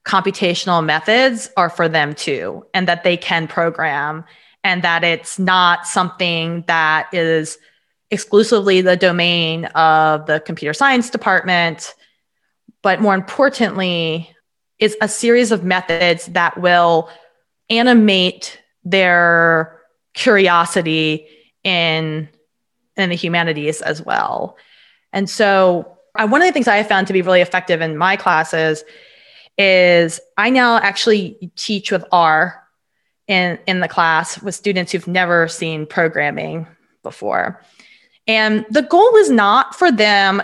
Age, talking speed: 20-39, 130 wpm